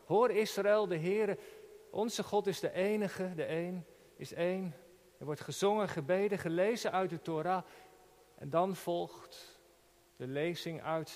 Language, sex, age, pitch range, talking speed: Dutch, male, 50-69, 170-210 Hz, 145 wpm